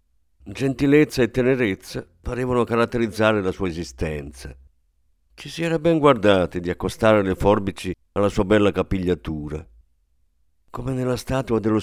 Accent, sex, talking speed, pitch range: native, male, 125 wpm, 85-115 Hz